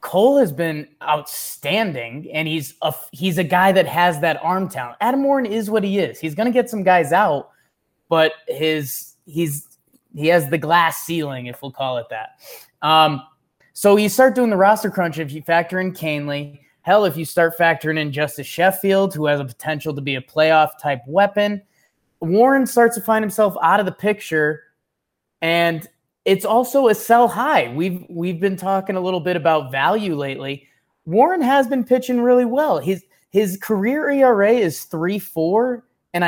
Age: 20-39